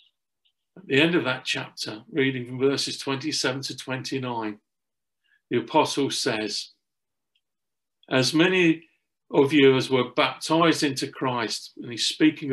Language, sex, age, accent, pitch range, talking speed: English, male, 50-69, British, 130-160 Hz, 125 wpm